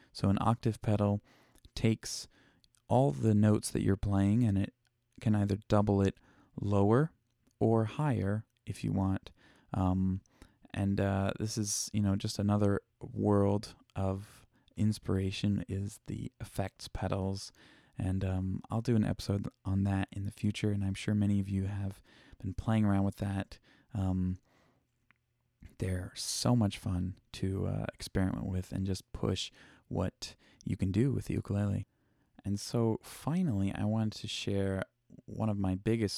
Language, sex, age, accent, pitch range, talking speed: English, male, 20-39, American, 95-110 Hz, 155 wpm